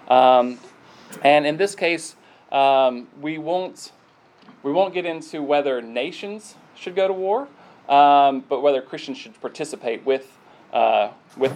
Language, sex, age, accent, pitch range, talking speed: English, male, 30-49, American, 120-160 Hz, 140 wpm